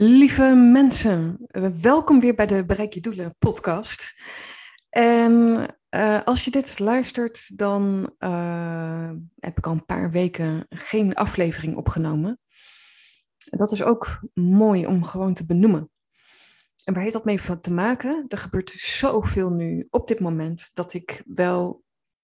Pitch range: 170-225 Hz